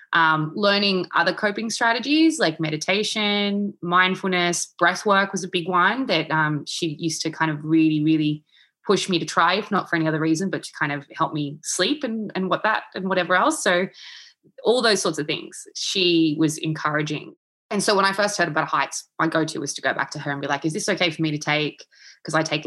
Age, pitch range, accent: 20-39, 150-195 Hz, Australian